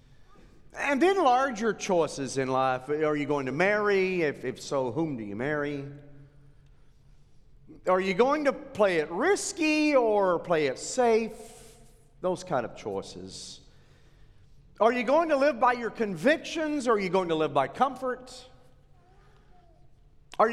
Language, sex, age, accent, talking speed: English, male, 40-59, American, 145 wpm